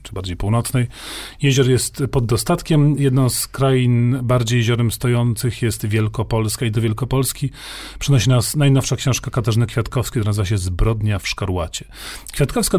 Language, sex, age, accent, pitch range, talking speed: Polish, male, 40-59, native, 110-135 Hz, 145 wpm